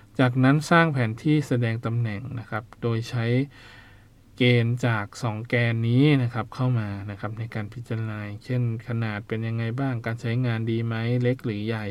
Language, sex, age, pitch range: Thai, male, 20-39, 110-125 Hz